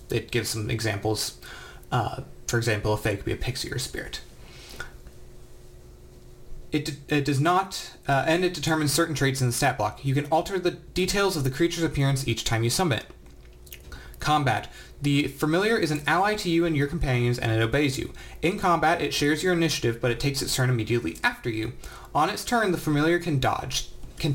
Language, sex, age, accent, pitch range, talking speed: English, male, 30-49, American, 120-160 Hz, 200 wpm